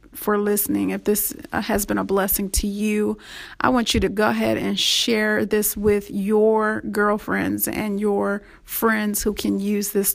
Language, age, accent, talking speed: English, 30-49, American, 170 wpm